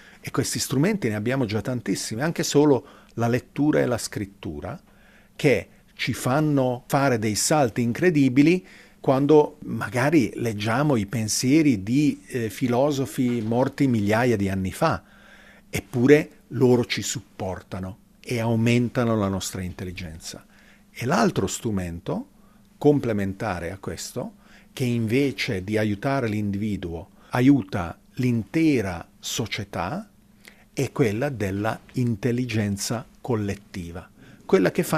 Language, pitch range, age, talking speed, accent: Italian, 100-135 Hz, 50-69, 110 wpm, native